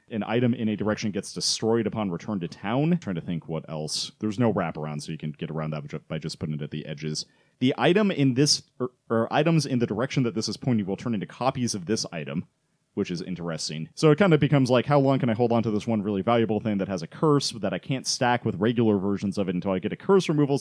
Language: English